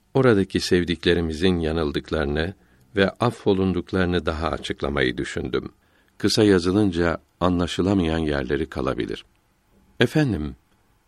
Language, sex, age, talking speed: Turkish, male, 60-79, 75 wpm